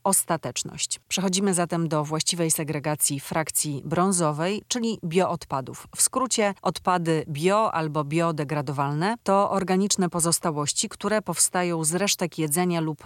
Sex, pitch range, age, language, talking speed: female, 155-190 Hz, 30-49, Polish, 115 wpm